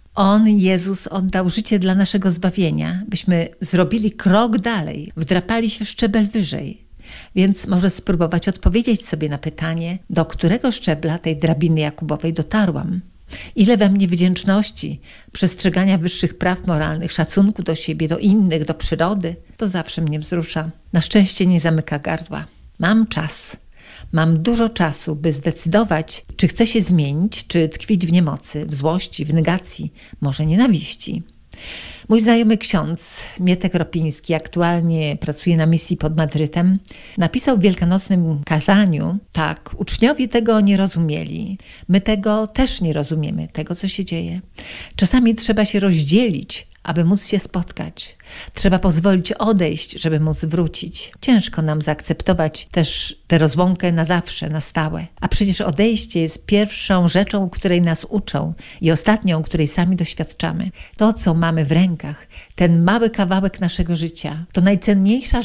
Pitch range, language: 160-200 Hz, Polish